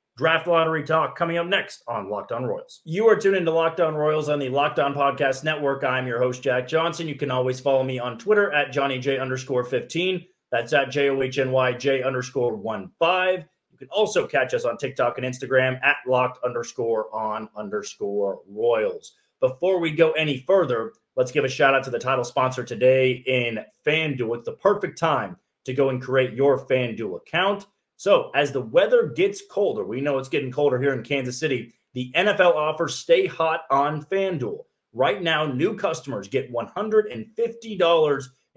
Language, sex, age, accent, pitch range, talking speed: English, male, 30-49, American, 130-185 Hz, 165 wpm